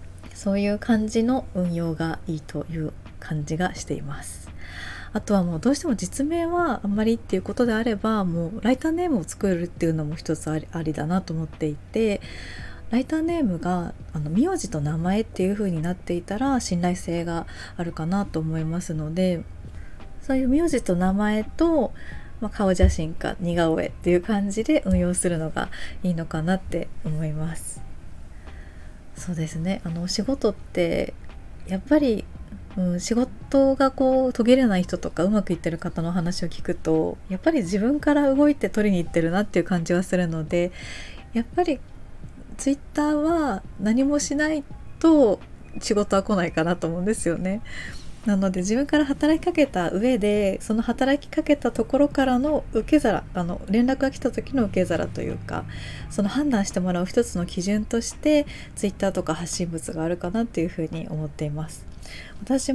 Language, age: Japanese, 20-39